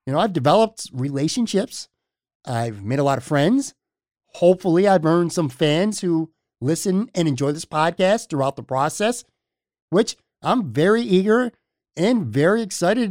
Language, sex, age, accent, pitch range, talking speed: English, male, 50-69, American, 135-185 Hz, 145 wpm